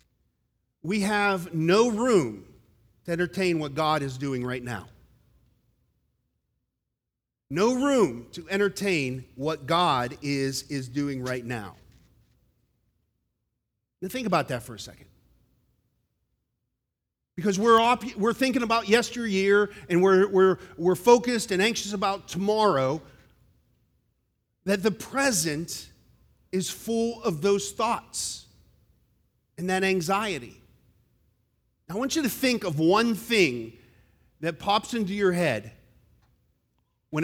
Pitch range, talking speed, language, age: 125-200 Hz, 115 wpm, English, 40-59